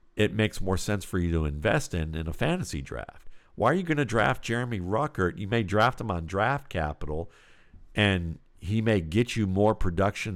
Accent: American